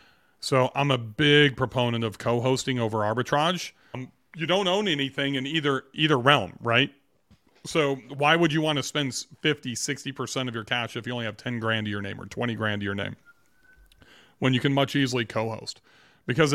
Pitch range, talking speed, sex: 120-150 Hz, 190 wpm, male